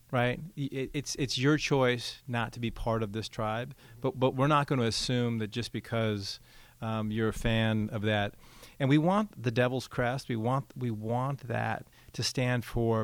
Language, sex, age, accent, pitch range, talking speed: English, male, 40-59, American, 110-130 Hz, 195 wpm